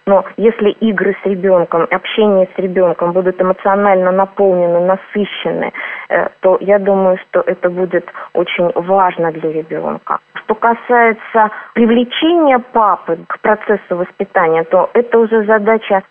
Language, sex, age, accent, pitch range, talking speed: Russian, female, 20-39, native, 180-215 Hz, 125 wpm